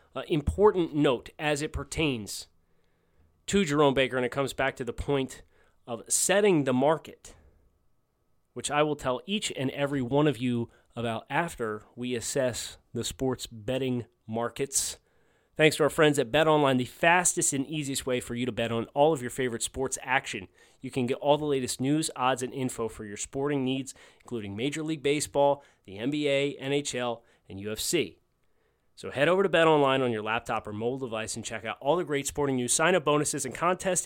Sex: male